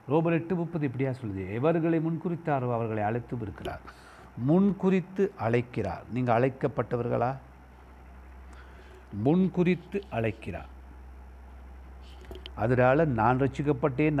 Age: 60-79